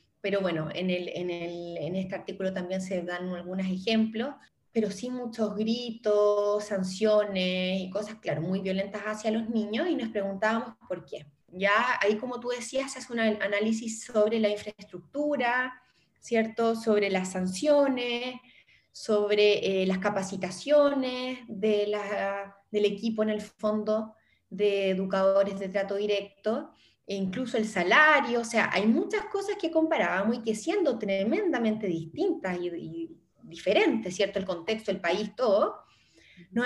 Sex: female